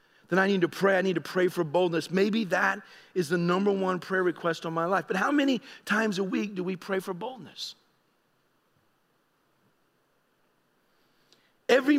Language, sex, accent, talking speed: English, male, American, 170 wpm